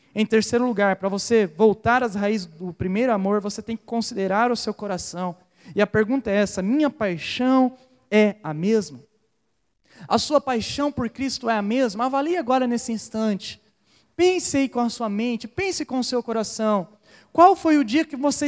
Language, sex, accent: Portuguese, male, Brazilian